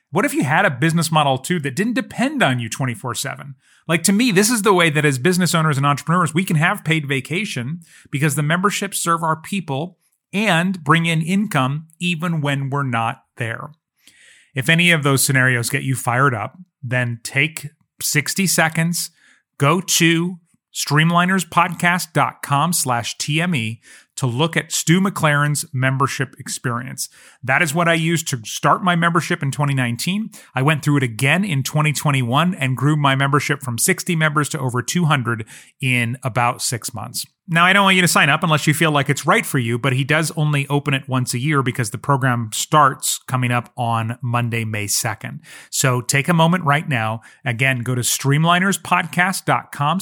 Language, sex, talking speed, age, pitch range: English, male, 180 wpm, 30-49, 130-170 Hz